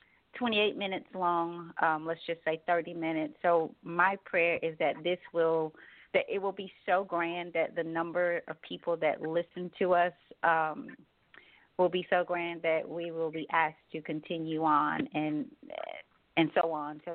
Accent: American